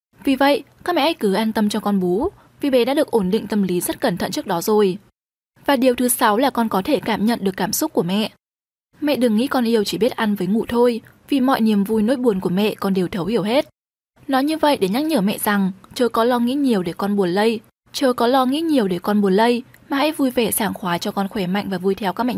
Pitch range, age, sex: 205-265 Hz, 20-39, female